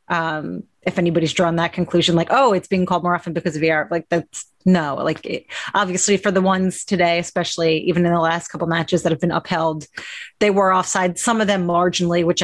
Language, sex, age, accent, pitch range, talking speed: English, female, 30-49, American, 175-205 Hz, 215 wpm